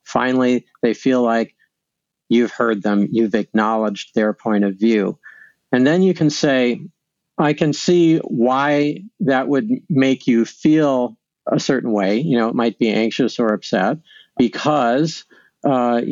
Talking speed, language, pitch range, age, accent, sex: 150 wpm, English, 115-140 Hz, 50-69, American, male